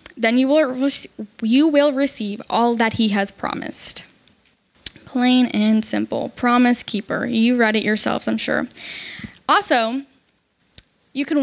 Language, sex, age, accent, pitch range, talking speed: English, female, 10-29, American, 220-265 Hz, 135 wpm